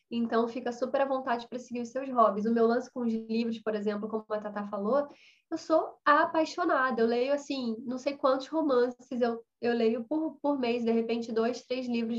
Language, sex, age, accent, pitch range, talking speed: Portuguese, female, 10-29, Brazilian, 225-270 Hz, 210 wpm